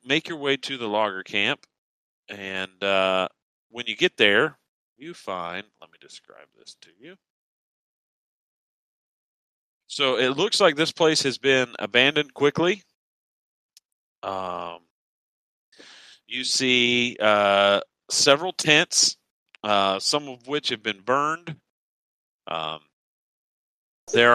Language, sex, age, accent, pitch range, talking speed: English, male, 40-59, American, 95-150 Hz, 115 wpm